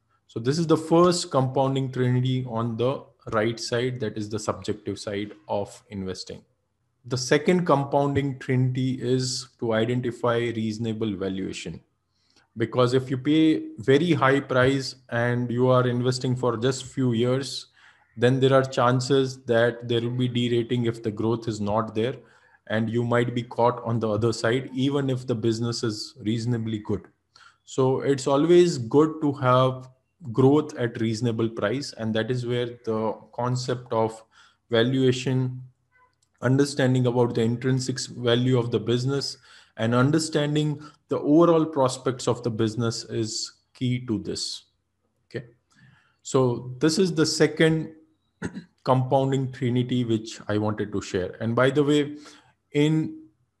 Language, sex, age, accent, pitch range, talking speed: Tamil, male, 20-39, native, 115-135 Hz, 145 wpm